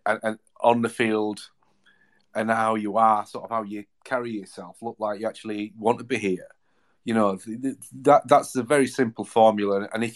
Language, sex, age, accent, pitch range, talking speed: English, male, 40-59, British, 110-135 Hz, 190 wpm